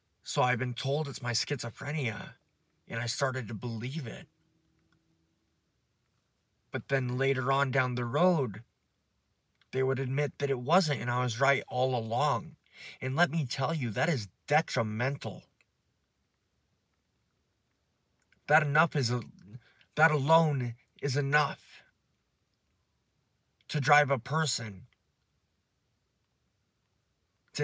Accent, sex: American, male